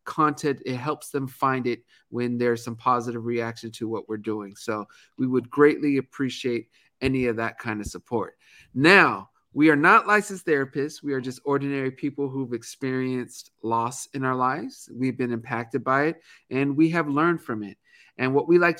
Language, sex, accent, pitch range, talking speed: English, male, American, 125-150 Hz, 185 wpm